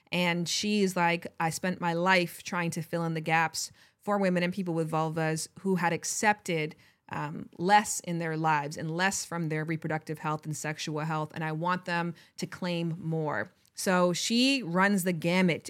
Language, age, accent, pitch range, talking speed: English, 20-39, American, 160-190 Hz, 185 wpm